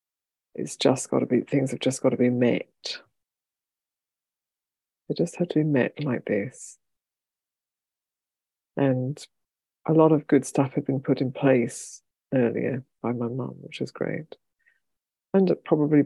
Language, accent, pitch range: English, British, 135-160 Hz